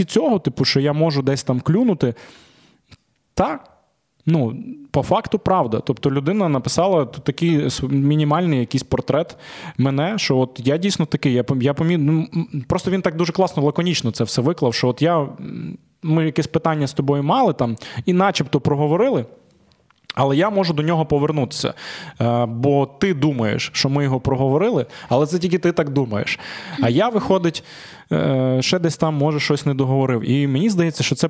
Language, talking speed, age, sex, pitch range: Ukrainian, 165 wpm, 20-39, male, 130-165 Hz